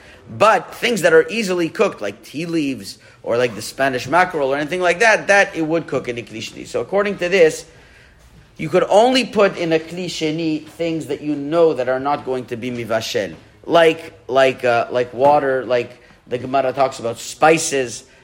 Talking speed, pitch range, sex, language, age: 190 wpm, 130-165 Hz, male, English, 40-59